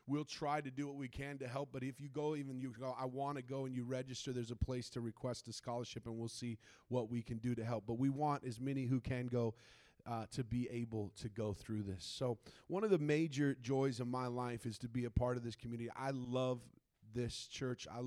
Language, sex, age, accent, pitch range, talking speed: English, male, 30-49, American, 120-145 Hz, 255 wpm